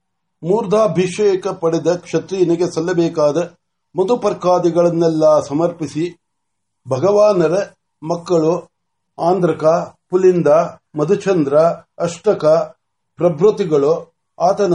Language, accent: Marathi, native